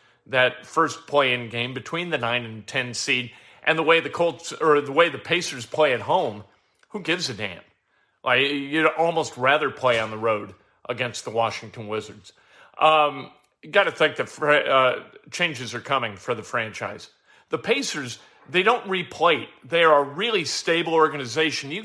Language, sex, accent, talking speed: English, male, American, 180 wpm